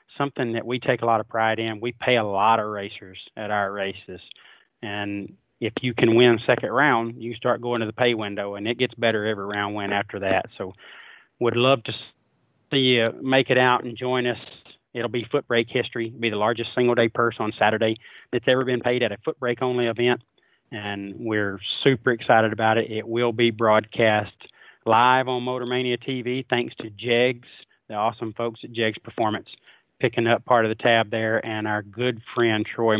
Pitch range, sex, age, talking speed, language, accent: 110-125 Hz, male, 30-49, 200 wpm, English, American